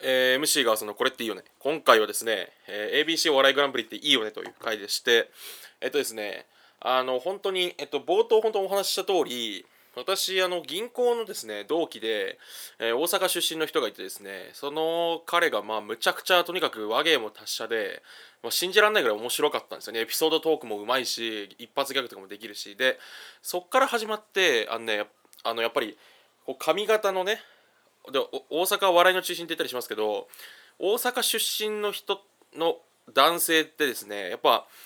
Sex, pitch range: male, 130-210 Hz